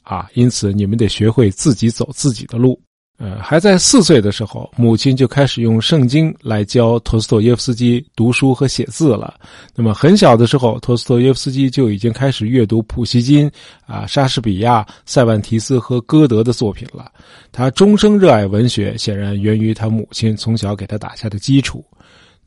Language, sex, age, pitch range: Chinese, male, 20-39, 110-140 Hz